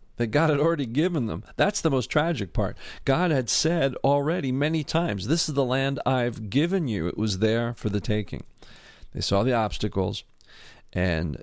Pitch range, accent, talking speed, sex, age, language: 105-145 Hz, American, 185 wpm, male, 50-69, English